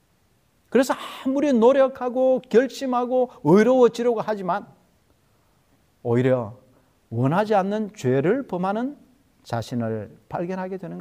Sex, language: male, Korean